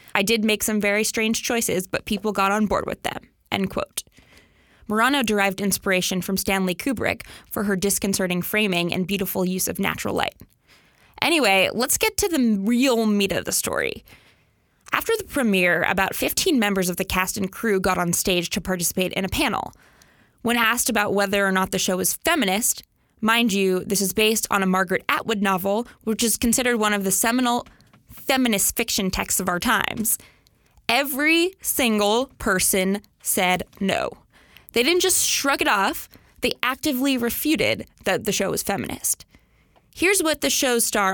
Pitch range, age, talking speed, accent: 195-245 Hz, 20-39, 170 wpm, American